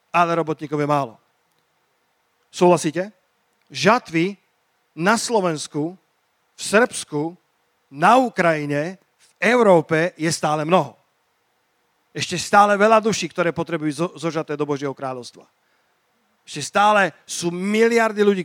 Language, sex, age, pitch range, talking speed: Slovak, male, 40-59, 145-190 Hz, 105 wpm